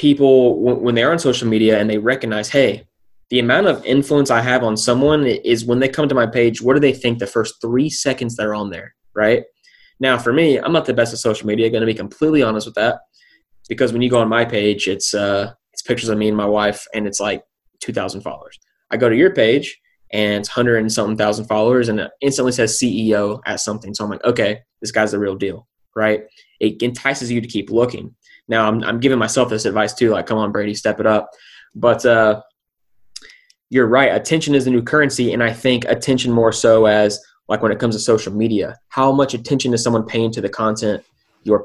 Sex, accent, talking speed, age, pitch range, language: male, American, 230 wpm, 20-39, 105-125 Hz, English